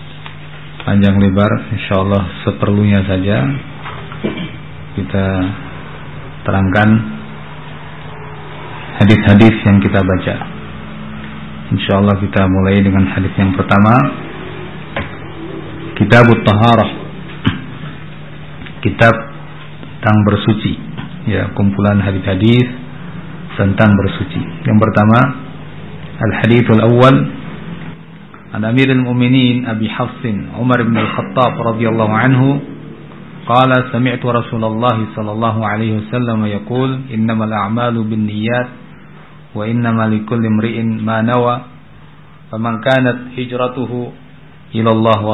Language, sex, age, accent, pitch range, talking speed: Indonesian, male, 50-69, native, 105-125 Hz, 80 wpm